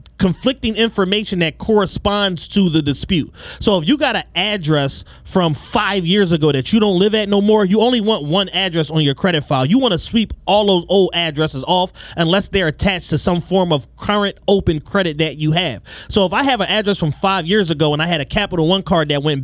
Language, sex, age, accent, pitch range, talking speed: English, male, 30-49, American, 155-205 Hz, 230 wpm